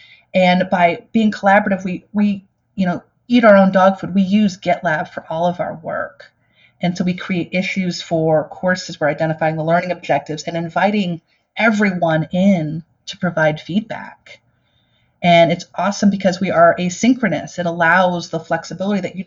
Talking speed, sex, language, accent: 165 wpm, female, English, American